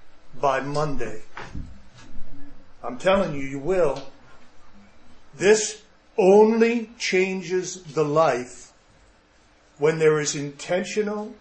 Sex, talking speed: male, 85 wpm